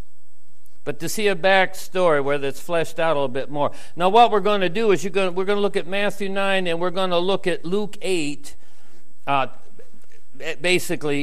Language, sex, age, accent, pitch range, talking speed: English, male, 60-79, American, 145-200 Hz, 220 wpm